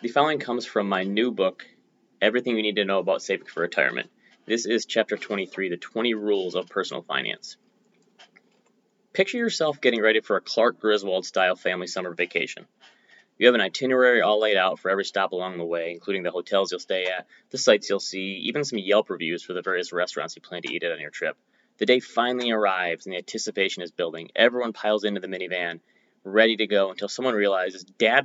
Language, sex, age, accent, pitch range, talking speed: English, male, 20-39, American, 95-120 Hz, 205 wpm